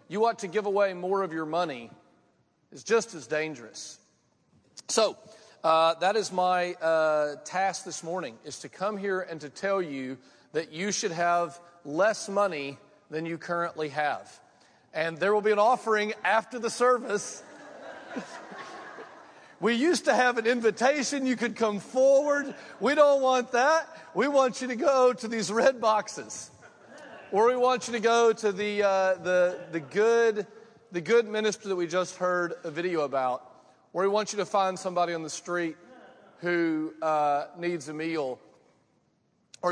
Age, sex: 40-59, male